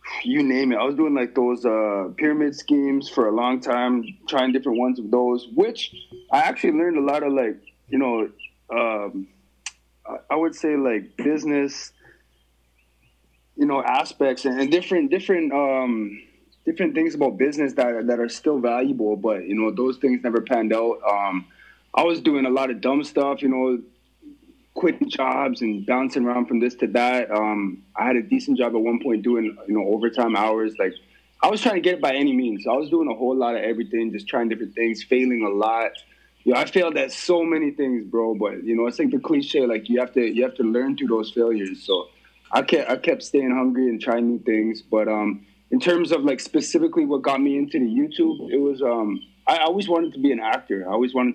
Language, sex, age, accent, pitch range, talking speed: English, male, 20-39, American, 110-145 Hz, 220 wpm